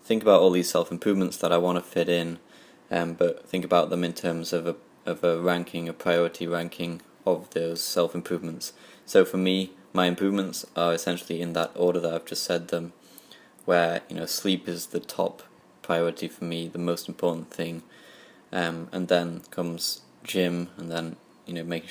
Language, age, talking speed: English, 20-39, 190 wpm